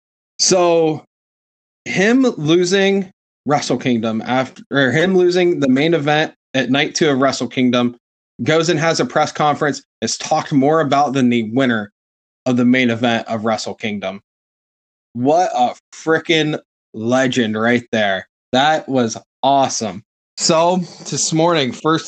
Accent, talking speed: American, 140 wpm